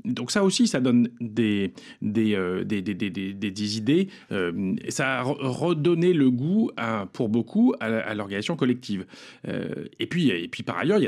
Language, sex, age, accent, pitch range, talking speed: French, male, 40-59, French, 115-170 Hz, 190 wpm